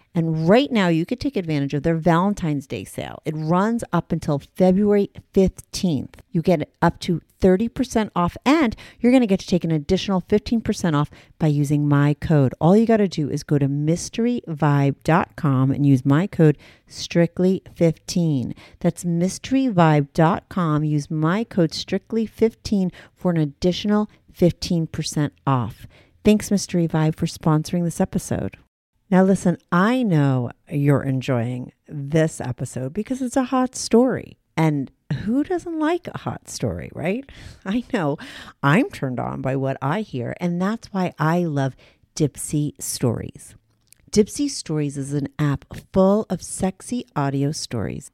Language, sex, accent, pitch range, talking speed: English, female, American, 140-190 Hz, 145 wpm